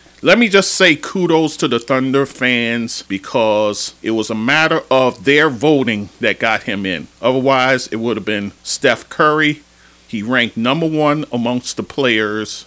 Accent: American